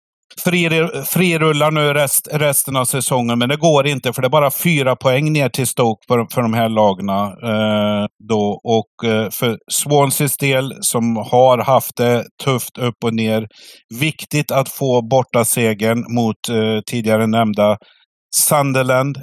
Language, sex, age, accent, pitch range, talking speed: Swedish, male, 50-69, native, 115-135 Hz, 155 wpm